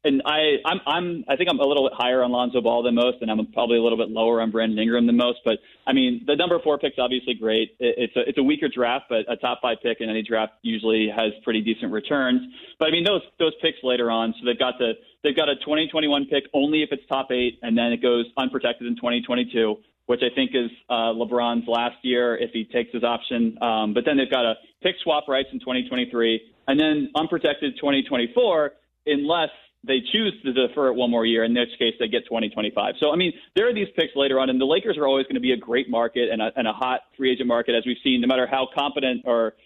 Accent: American